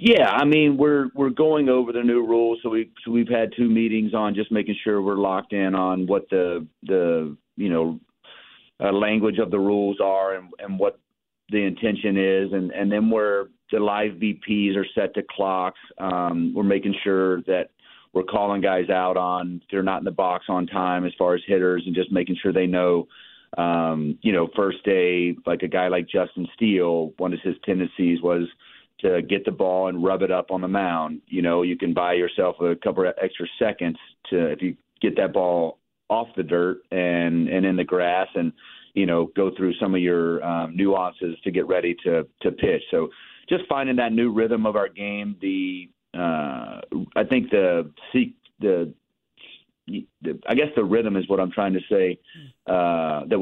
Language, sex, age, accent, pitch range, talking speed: English, male, 40-59, American, 90-110 Hz, 200 wpm